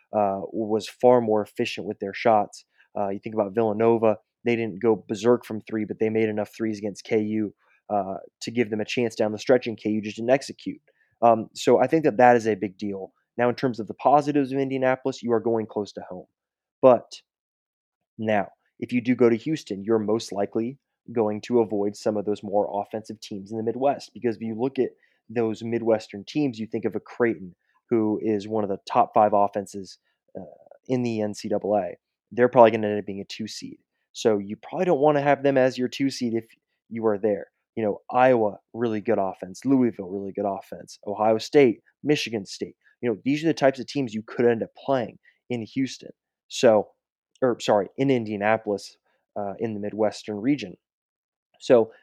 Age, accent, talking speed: 20-39, American, 205 wpm